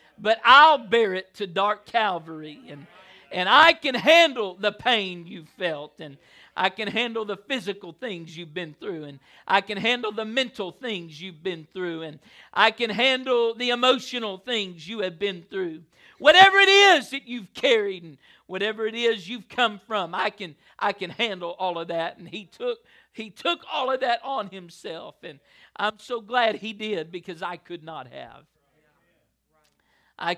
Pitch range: 170-225 Hz